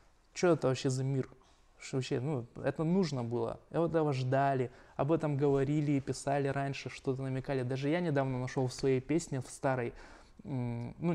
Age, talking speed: 20-39, 165 wpm